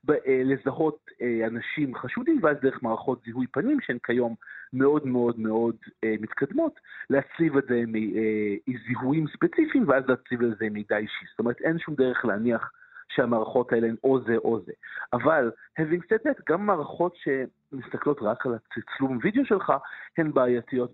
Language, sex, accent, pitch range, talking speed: Hebrew, male, native, 120-160 Hz, 165 wpm